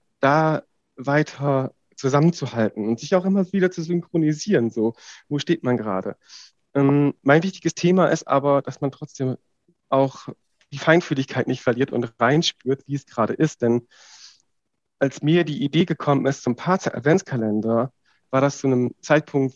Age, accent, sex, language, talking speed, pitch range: 40-59, German, male, German, 155 wpm, 130-155 Hz